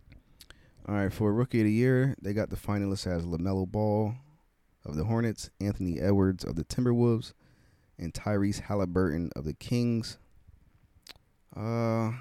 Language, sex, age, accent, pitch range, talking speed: English, male, 20-39, American, 80-105 Hz, 145 wpm